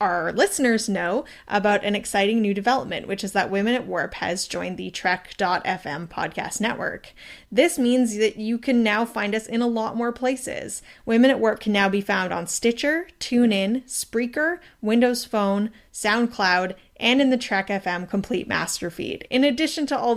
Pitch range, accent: 200-240 Hz, American